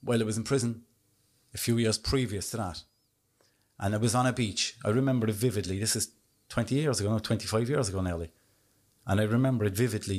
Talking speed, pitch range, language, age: 210 wpm, 100-120 Hz, English, 30-49